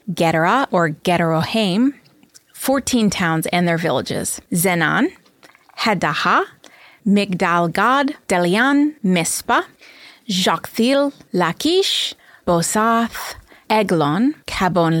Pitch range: 175-265 Hz